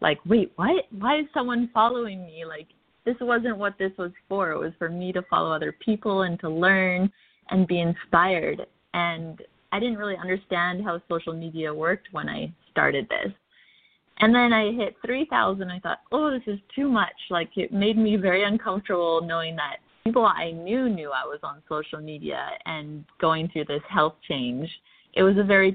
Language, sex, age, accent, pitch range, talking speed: English, female, 20-39, American, 165-220 Hz, 190 wpm